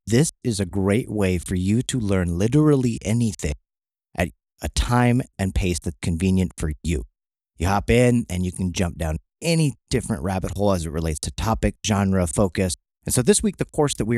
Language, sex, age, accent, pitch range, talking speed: English, male, 30-49, American, 85-115 Hz, 200 wpm